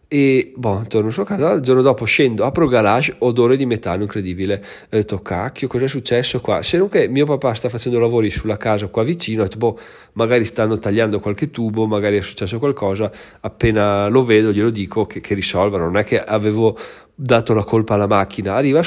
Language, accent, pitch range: Italian, native, 105-125 Hz